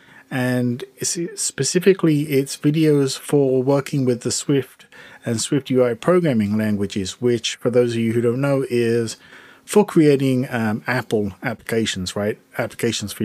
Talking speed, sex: 140 wpm, male